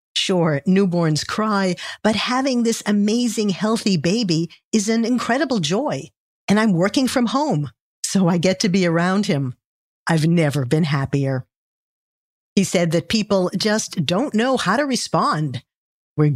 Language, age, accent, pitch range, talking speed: English, 50-69, American, 160-220 Hz, 145 wpm